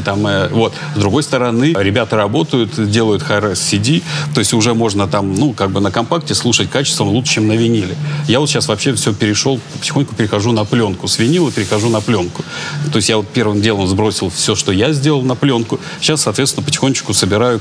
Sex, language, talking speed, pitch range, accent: male, Russian, 200 wpm, 105-145 Hz, native